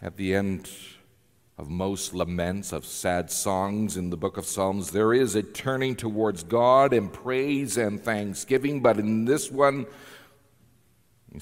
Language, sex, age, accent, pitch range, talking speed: English, male, 50-69, American, 105-135 Hz, 150 wpm